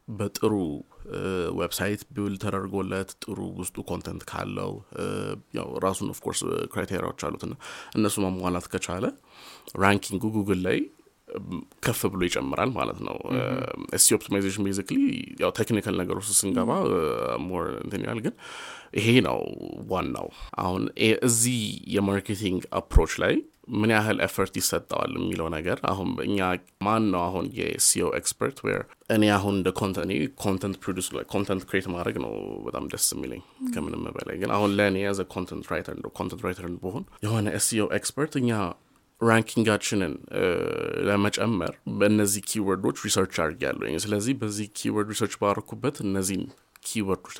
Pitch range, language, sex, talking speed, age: 95-110 Hz, Amharic, male, 120 wpm, 30-49